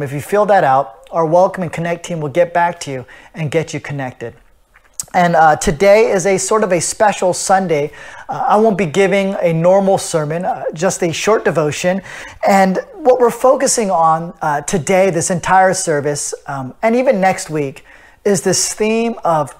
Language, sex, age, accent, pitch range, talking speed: English, male, 30-49, American, 160-215 Hz, 185 wpm